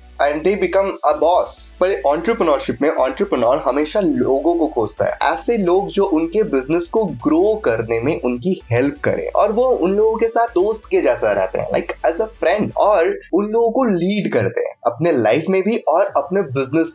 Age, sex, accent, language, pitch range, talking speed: 20-39, male, native, Hindi, 155-240 Hz, 150 wpm